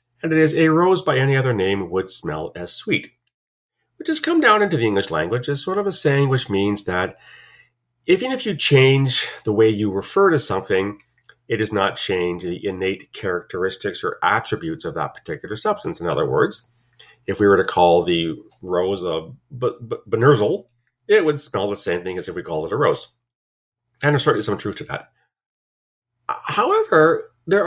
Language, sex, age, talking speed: English, male, 40-59, 195 wpm